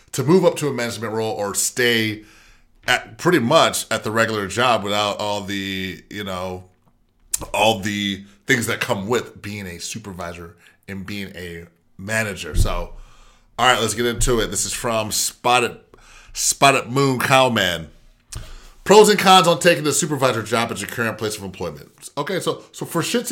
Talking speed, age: 170 wpm, 30-49